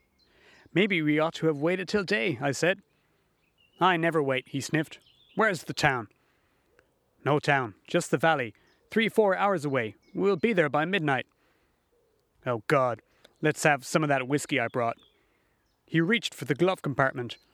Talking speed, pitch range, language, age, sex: 165 wpm, 145-185 Hz, English, 30-49, male